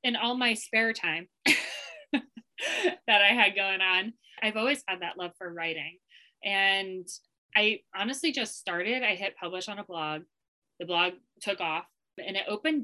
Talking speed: 165 wpm